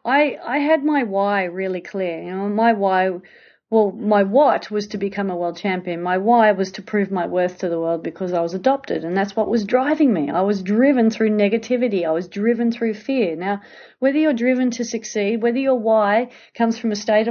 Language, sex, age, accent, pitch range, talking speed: English, female, 40-59, Australian, 185-225 Hz, 220 wpm